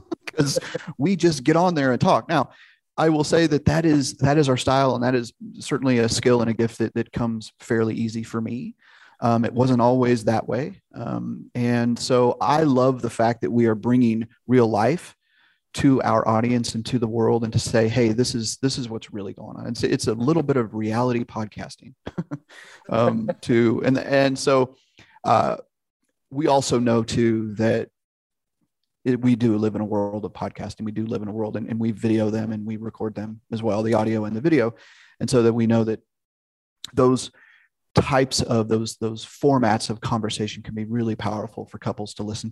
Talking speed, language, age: 205 wpm, English, 30-49